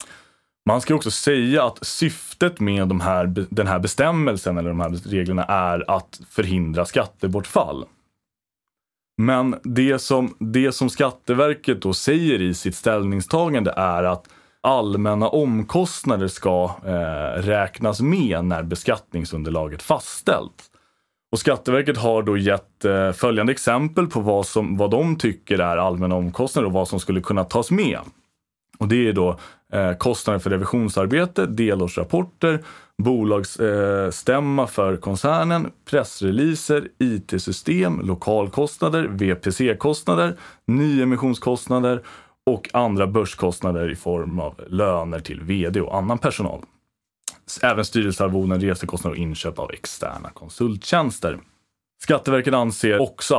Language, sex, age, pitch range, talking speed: Swedish, male, 30-49, 95-125 Hz, 115 wpm